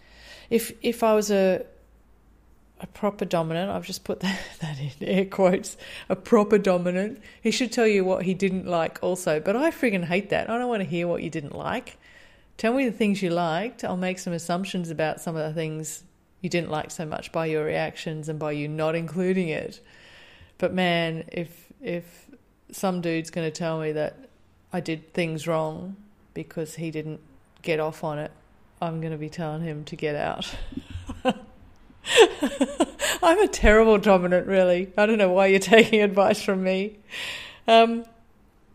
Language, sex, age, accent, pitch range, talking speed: English, female, 30-49, Australian, 160-200 Hz, 180 wpm